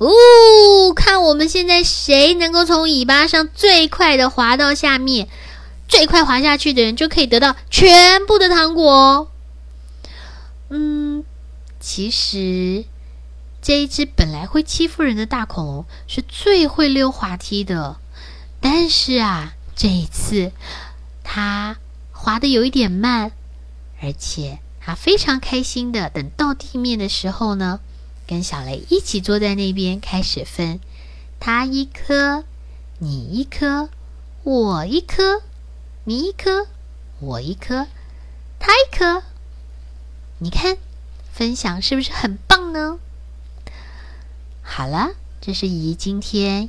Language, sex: Chinese, female